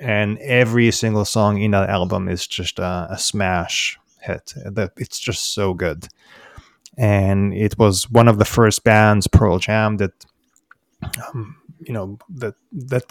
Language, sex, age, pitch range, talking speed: English, male, 20-39, 100-115 Hz, 150 wpm